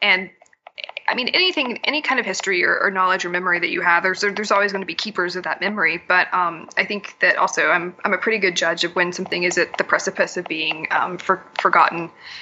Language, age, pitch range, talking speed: English, 20-39, 180-225 Hz, 240 wpm